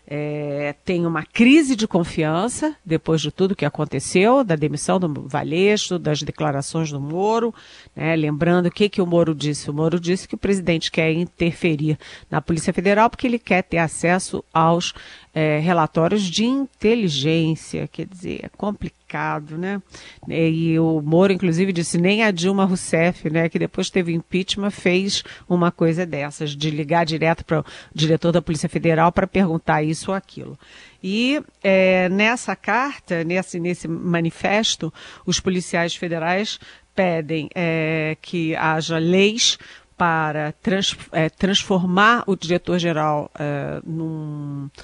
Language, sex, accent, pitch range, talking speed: Portuguese, female, Brazilian, 160-195 Hz, 140 wpm